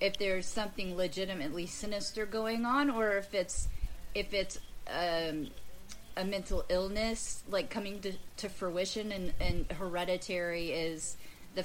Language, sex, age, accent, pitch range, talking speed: English, female, 30-49, American, 165-195 Hz, 135 wpm